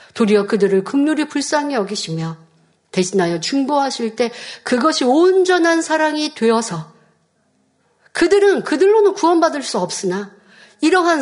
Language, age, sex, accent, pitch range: Korean, 50-69, female, native, 225-290 Hz